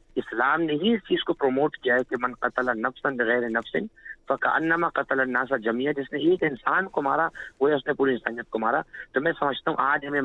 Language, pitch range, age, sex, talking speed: Urdu, 120-165 Hz, 50-69, male, 230 wpm